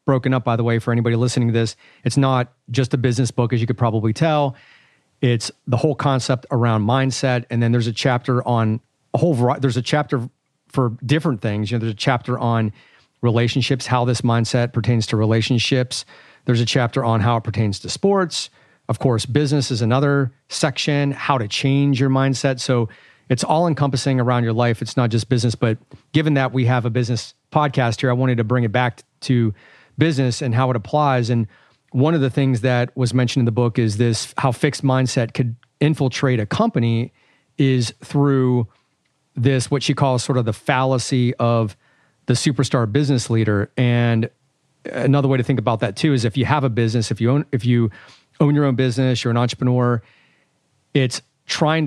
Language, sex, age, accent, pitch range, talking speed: English, male, 40-59, American, 120-135 Hz, 195 wpm